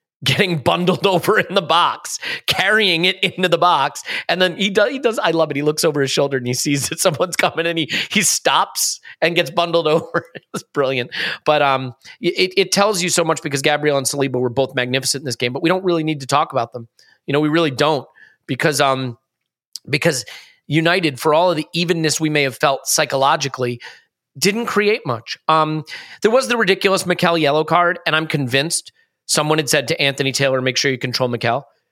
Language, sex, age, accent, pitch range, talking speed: English, male, 30-49, American, 130-165 Hz, 210 wpm